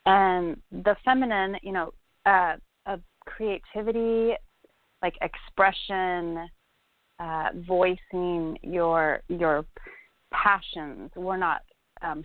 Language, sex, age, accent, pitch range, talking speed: English, female, 30-49, American, 175-210 Hz, 95 wpm